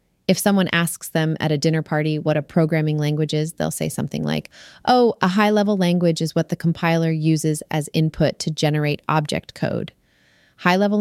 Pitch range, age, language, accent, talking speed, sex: 155-190 Hz, 30-49, English, American, 180 wpm, female